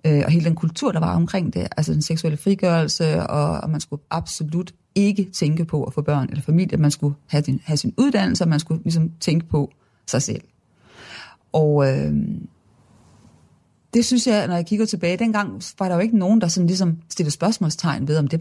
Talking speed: 205 wpm